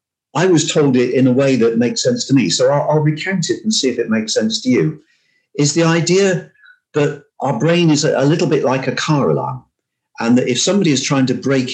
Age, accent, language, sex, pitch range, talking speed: 50-69, British, English, male, 115-165 Hz, 240 wpm